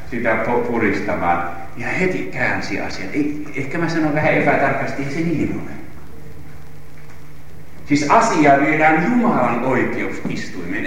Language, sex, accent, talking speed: Finnish, male, native, 120 wpm